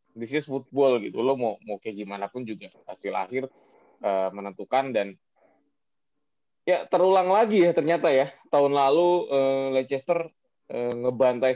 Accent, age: native, 20-39